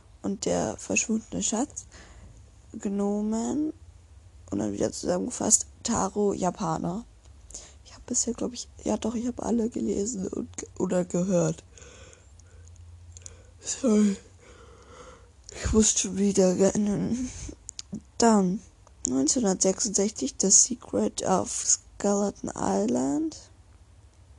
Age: 20-39